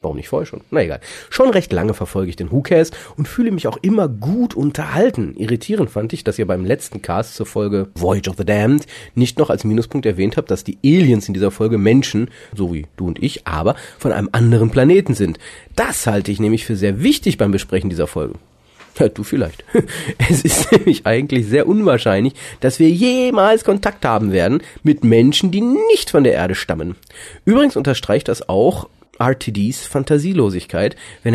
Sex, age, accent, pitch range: male, 40-59, German, 100-145 Hz